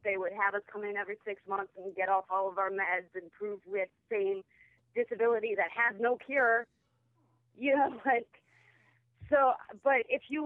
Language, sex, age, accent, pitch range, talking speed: English, female, 30-49, American, 195-240 Hz, 190 wpm